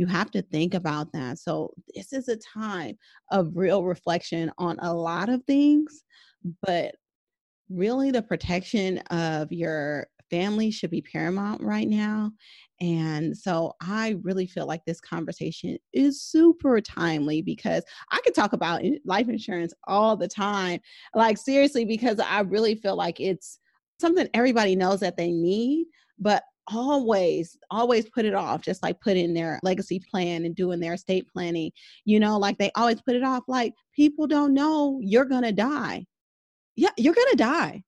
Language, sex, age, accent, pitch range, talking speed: English, female, 30-49, American, 175-265 Hz, 165 wpm